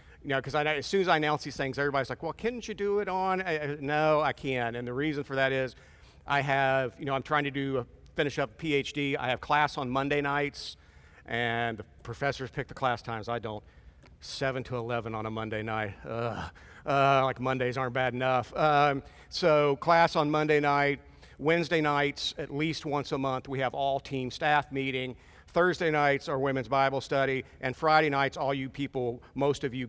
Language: English